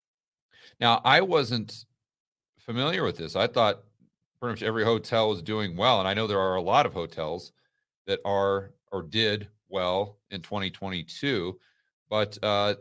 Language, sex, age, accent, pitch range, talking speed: English, male, 40-59, American, 100-120 Hz, 155 wpm